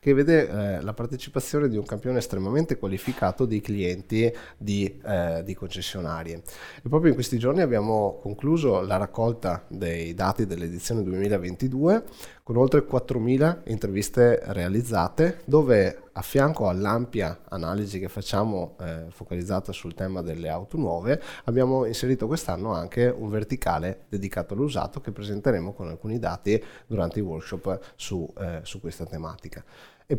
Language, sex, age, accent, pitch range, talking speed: Italian, male, 20-39, native, 95-125 Hz, 140 wpm